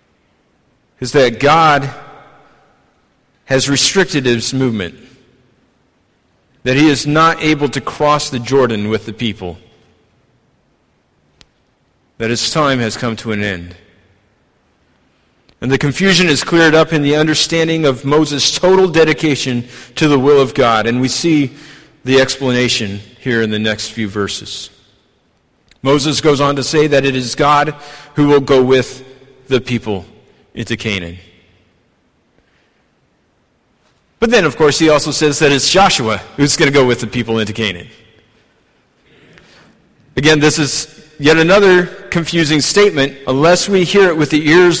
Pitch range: 120-155 Hz